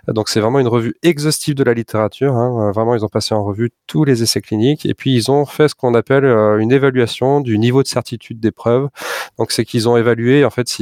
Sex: male